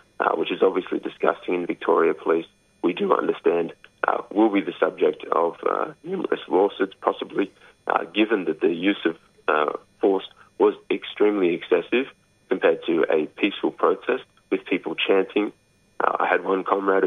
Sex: male